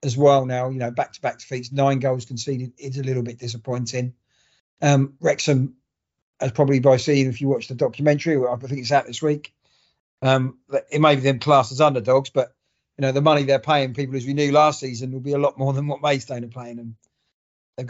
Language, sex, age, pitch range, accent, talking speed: English, male, 40-59, 130-150 Hz, British, 225 wpm